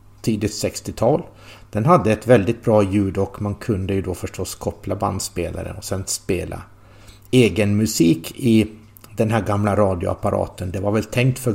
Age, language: 60-79, Swedish